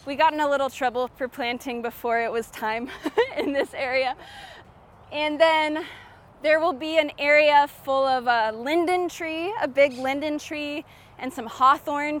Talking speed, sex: 165 wpm, female